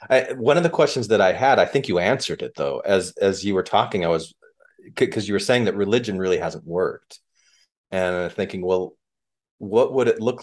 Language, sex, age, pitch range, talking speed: English, male, 40-59, 90-120 Hz, 220 wpm